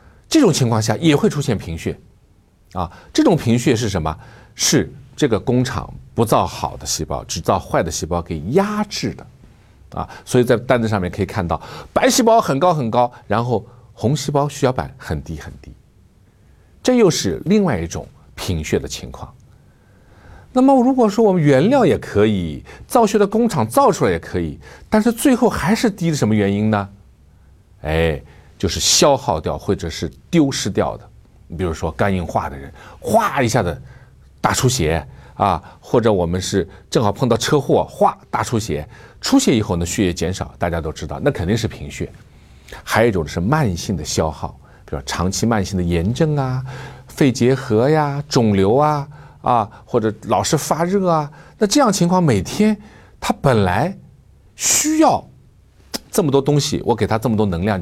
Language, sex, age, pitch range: Chinese, male, 50-69, 90-150 Hz